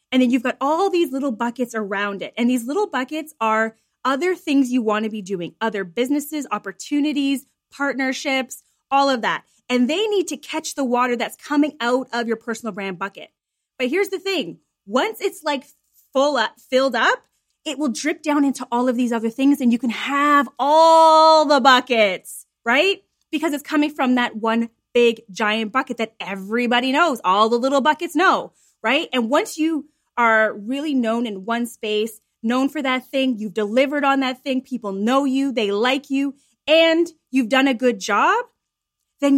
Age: 20-39